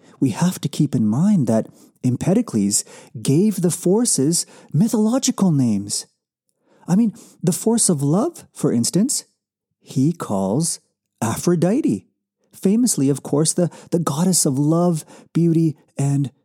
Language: English